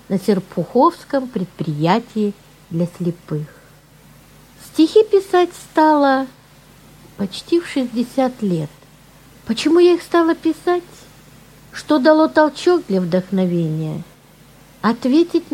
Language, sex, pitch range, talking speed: Russian, female, 170-265 Hz, 90 wpm